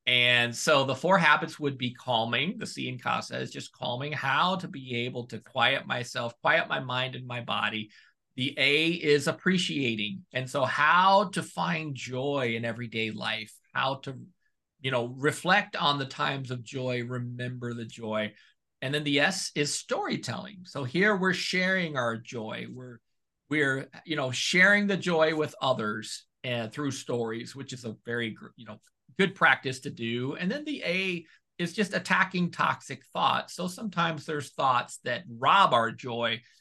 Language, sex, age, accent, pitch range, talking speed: English, male, 50-69, American, 120-160 Hz, 170 wpm